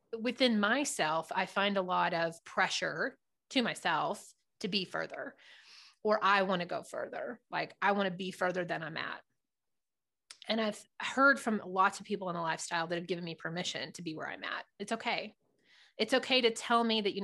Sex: female